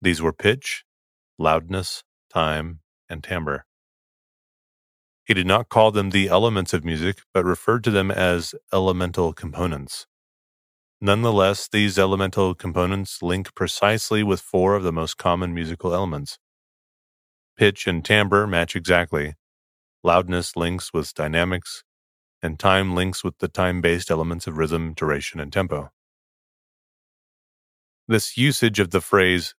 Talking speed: 130 wpm